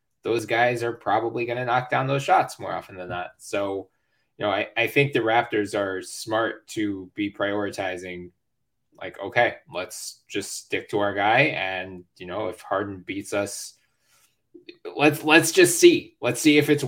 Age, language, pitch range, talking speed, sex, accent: 20-39, English, 110-140 Hz, 180 wpm, male, American